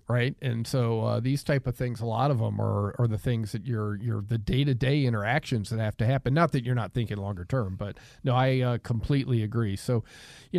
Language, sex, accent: English, male, American